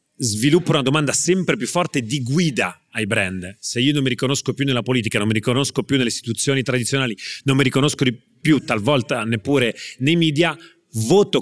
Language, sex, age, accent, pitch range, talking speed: Italian, male, 30-49, native, 115-145 Hz, 185 wpm